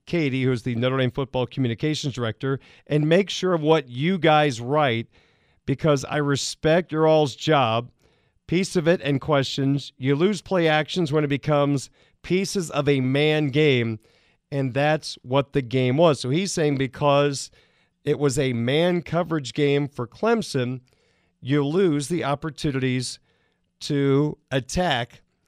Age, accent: 50-69, American